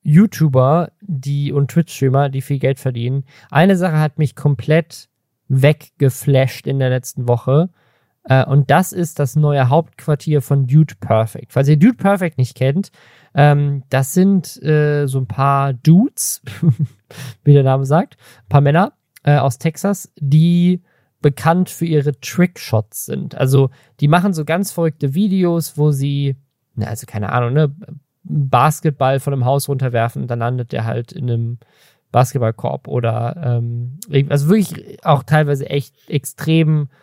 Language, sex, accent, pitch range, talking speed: German, male, German, 130-155 Hz, 145 wpm